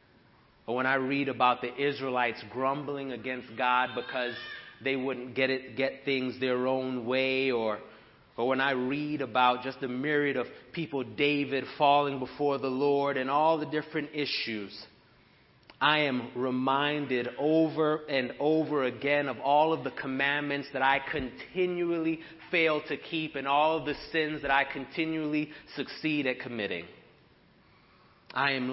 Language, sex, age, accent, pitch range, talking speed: English, male, 30-49, American, 135-170 Hz, 150 wpm